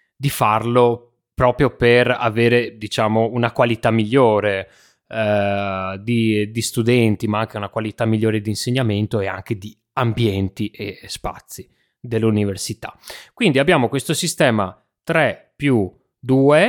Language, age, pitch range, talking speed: Italian, 20-39, 110-135 Hz, 120 wpm